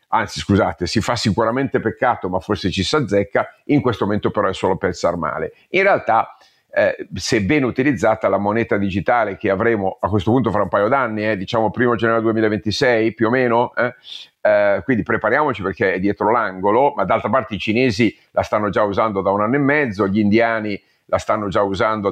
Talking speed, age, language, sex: 195 wpm, 50-69, Italian, male